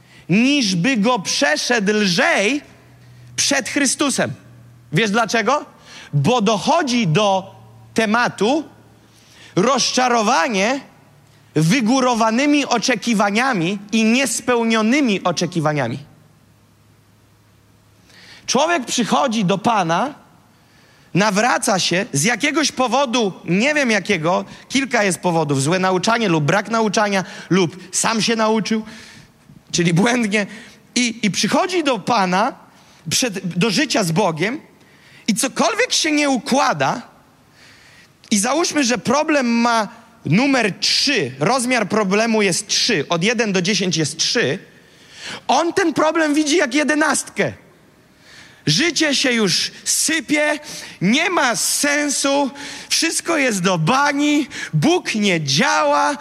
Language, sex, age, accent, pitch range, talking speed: Polish, male, 30-49, native, 185-275 Hz, 105 wpm